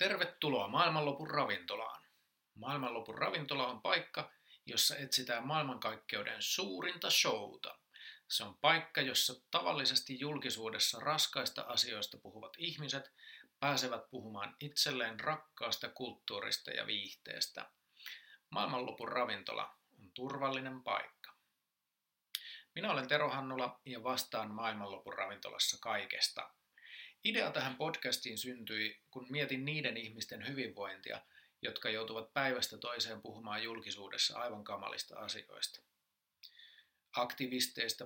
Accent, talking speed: native, 100 wpm